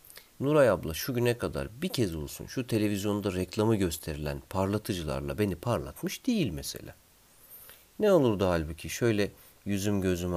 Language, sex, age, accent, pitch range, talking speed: Turkish, male, 40-59, native, 85-130 Hz, 140 wpm